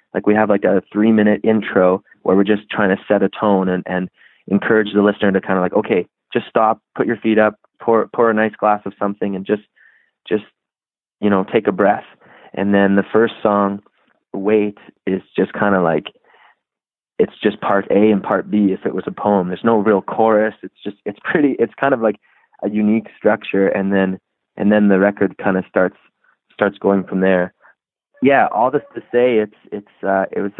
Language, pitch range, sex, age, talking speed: English, 95-105 Hz, male, 20-39, 210 wpm